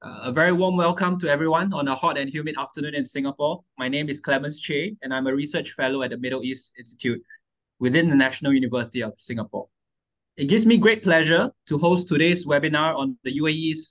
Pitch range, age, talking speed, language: 130-165 Hz, 20-39, 205 wpm, English